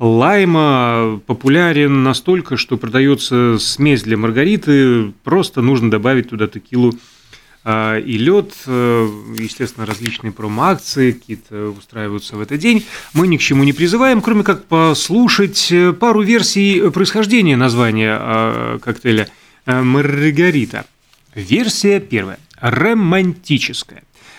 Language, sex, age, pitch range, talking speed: Russian, male, 30-49, 115-165 Hz, 100 wpm